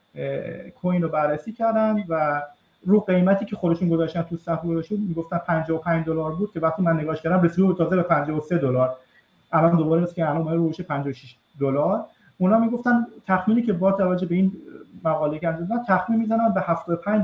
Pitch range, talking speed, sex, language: 165-200 Hz, 175 wpm, male, Persian